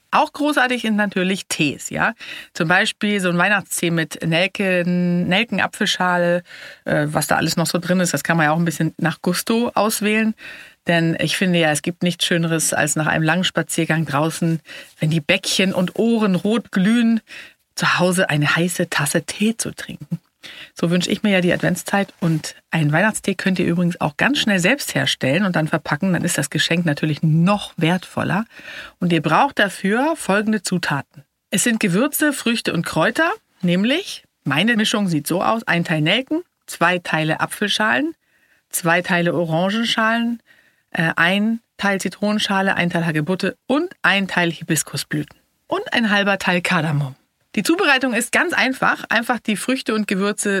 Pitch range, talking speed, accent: 165-220 Hz, 165 wpm, German